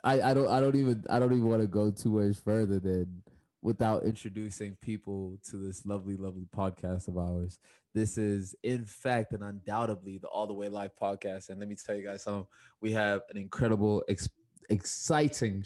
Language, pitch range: English, 105-125 Hz